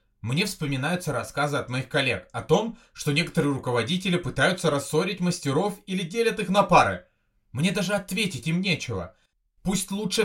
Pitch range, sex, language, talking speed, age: 135-185 Hz, male, Russian, 150 wpm, 30-49